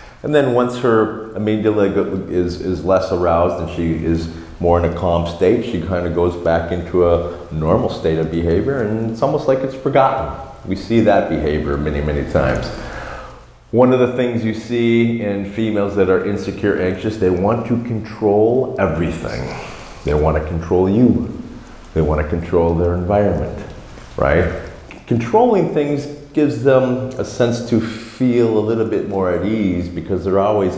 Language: English